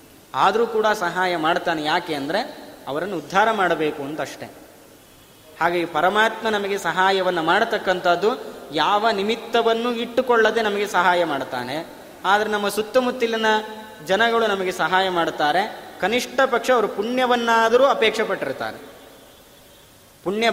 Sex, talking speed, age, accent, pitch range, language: male, 100 wpm, 20-39, native, 175-220 Hz, Kannada